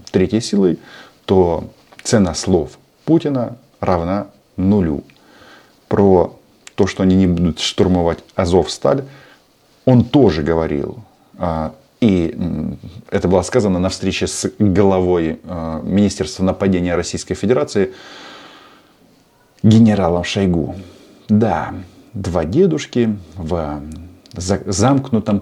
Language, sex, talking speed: Russian, male, 90 wpm